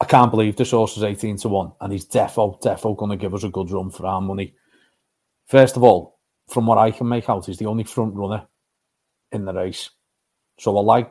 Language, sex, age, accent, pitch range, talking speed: English, male, 40-59, British, 105-125 Hz, 225 wpm